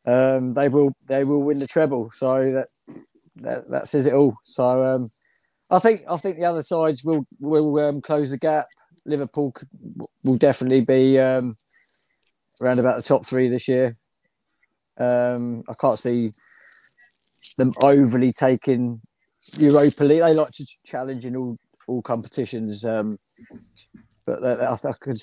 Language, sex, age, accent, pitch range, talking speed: English, male, 20-39, British, 115-140 Hz, 155 wpm